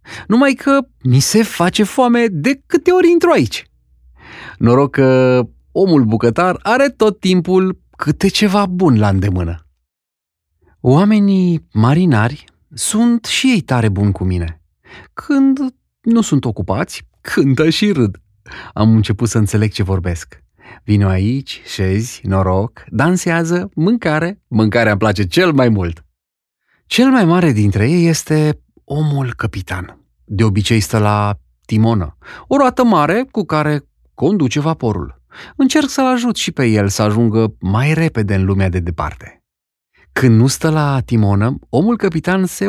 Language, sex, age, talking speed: Romanian, male, 30-49, 140 wpm